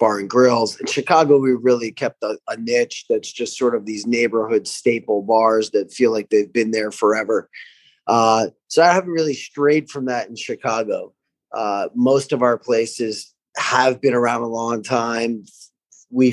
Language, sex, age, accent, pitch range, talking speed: English, male, 20-39, American, 110-135 Hz, 175 wpm